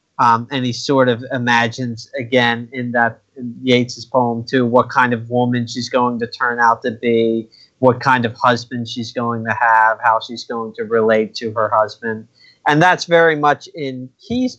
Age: 30-49